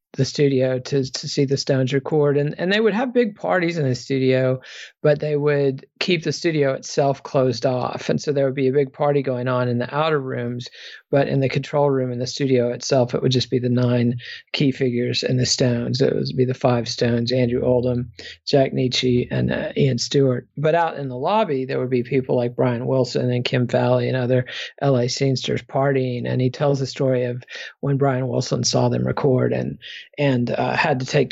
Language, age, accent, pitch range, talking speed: English, 40-59, American, 125-145 Hz, 215 wpm